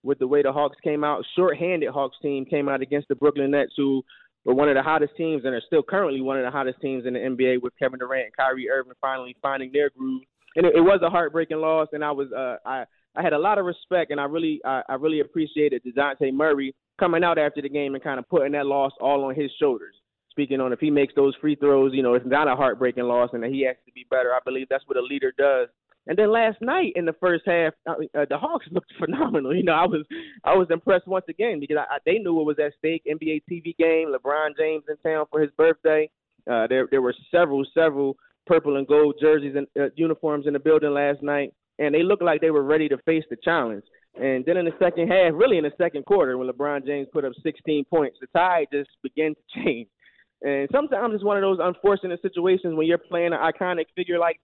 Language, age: English, 20-39